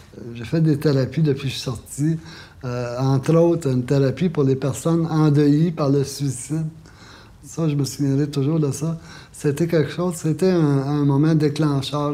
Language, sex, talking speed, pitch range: French, male, 180 wpm, 125-150 Hz